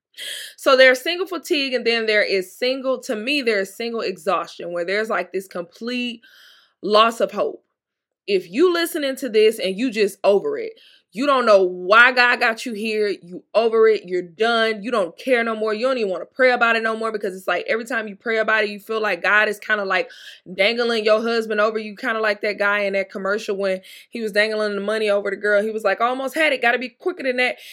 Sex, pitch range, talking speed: female, 200-245 Hz, 240 wpm